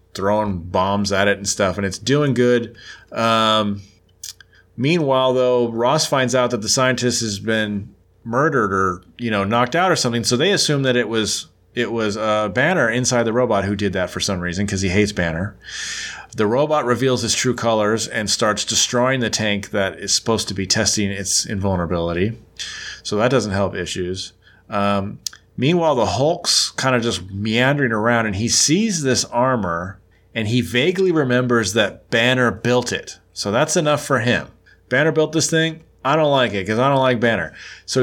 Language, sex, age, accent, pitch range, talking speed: English, male, 30-49, American, 100-125 Hz, 185 wpm